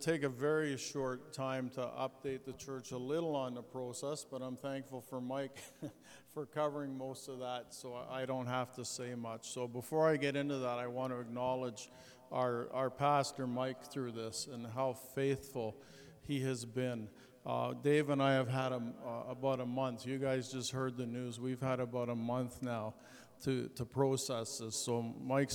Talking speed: 190 wpm